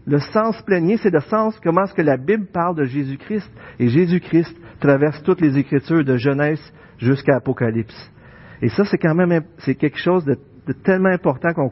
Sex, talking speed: male, 190 wpm